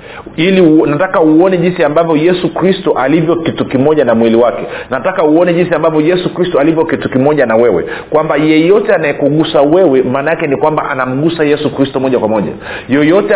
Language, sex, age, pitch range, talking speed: Swahili, male, 40-59, 130-165 Hz, 170 wpm